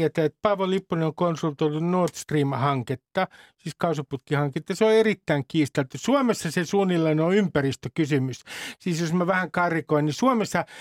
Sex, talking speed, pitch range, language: male, 140 wpm, 155-210 Hz, Finnish